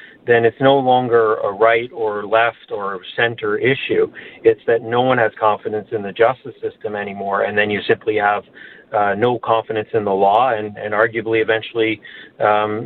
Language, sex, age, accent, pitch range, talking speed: English, male, 40-59, American, 110-135 Hz, 175 wpm